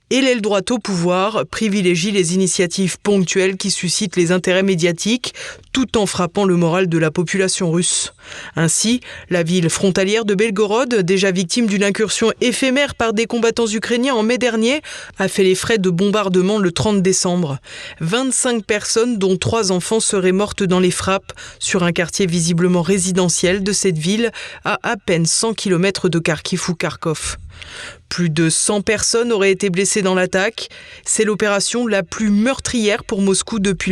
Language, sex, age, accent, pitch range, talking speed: French, female, 20-39, French, 185-230 Hz, 165 wpm